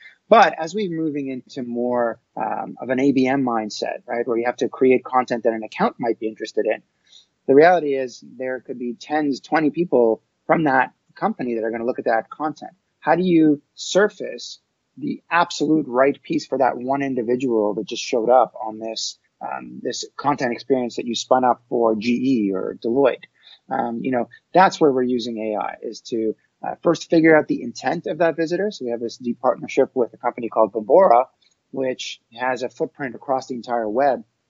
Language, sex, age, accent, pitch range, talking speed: English, male, 30-49, American, 120-150 Hz, 195 wpm